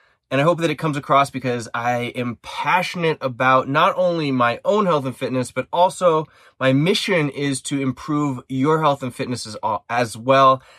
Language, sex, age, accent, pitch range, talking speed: English, male, 20-39, American, 115-150 Hz, 180 wpm